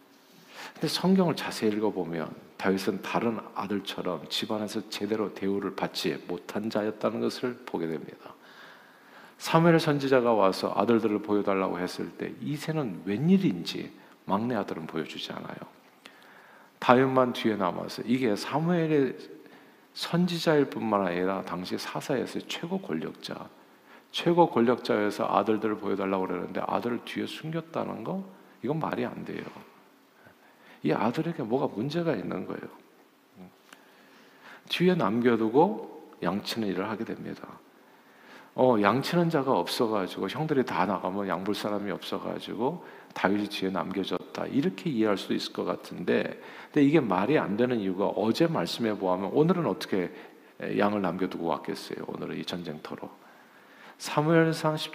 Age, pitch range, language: 50-69, 100-150 Hz, Korean